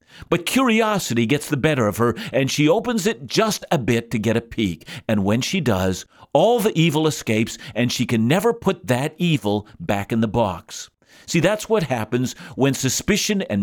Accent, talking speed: American, 195 wpm